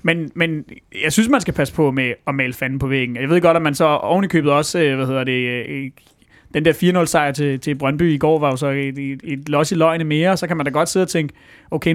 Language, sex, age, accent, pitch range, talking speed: Danish, male, 30-49, native, 140-165 Hz, 260 wpm